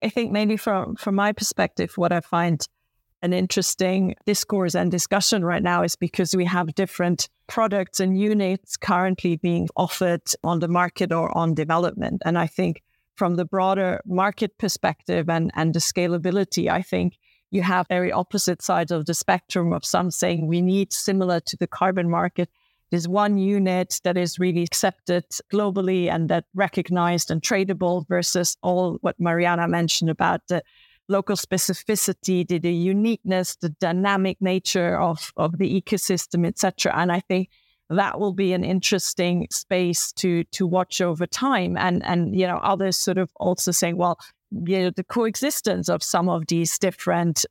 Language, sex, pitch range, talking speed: English, female, 175-195 Hz, 165 wpm